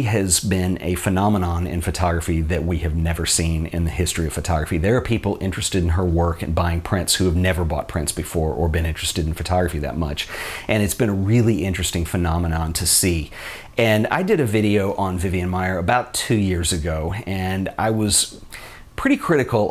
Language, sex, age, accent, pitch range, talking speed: English, male, 40-59, American, 85-100 Hz, 200 wpm